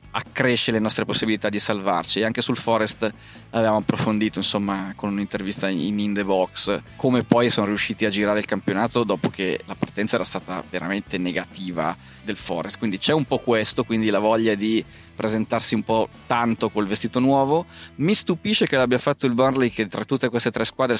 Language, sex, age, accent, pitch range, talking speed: Italian, male, 30-49, native, 105-120 Hz, 190 wpm